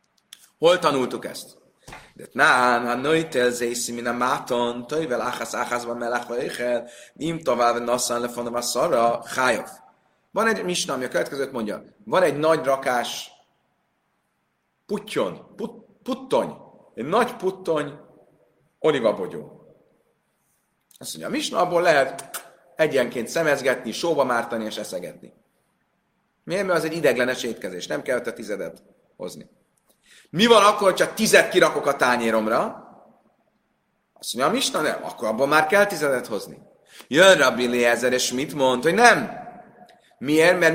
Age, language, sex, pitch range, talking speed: 30-49, Hungarian, male, 125-195 Hz, 125 wpm